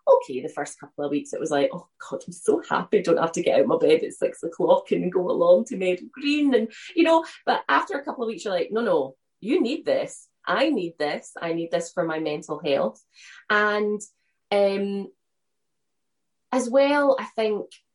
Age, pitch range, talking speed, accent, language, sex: 20-39, 175-245 Hz, 215 wpm, British, English, female